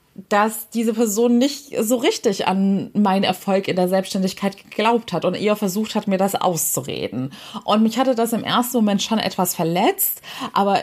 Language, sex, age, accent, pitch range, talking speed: German, female, 20-39, German, 185-235 Hz, 175 wpm